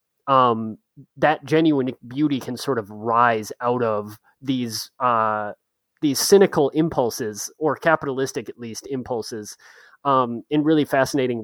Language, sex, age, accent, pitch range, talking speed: English, male, 30-49, American, 120-155 Hz, 125 wpm